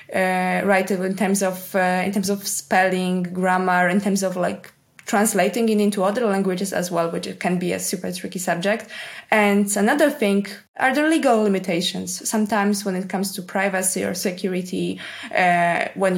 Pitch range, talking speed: 180-205 Hz, 170 wpm